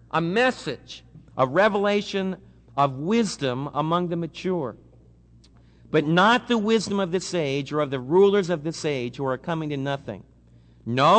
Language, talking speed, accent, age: English, 155 wpm, American, 50-69